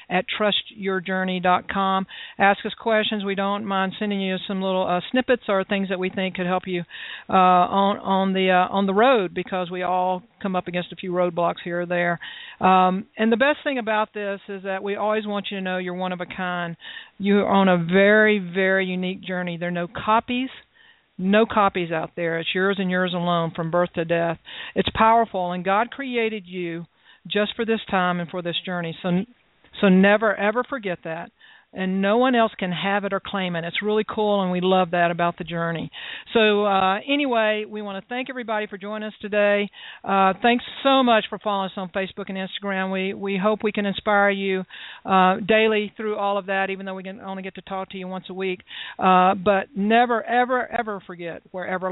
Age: 50-69